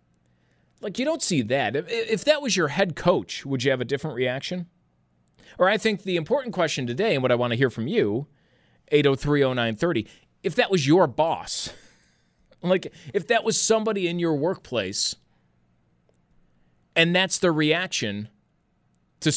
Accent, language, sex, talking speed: American, English, male, 175 wpm